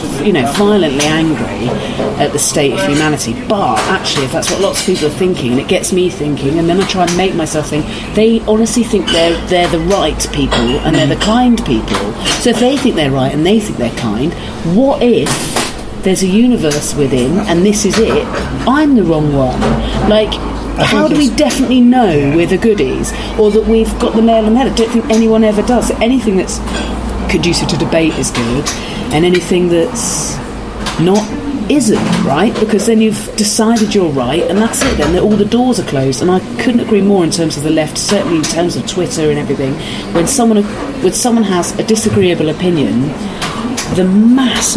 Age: 40-59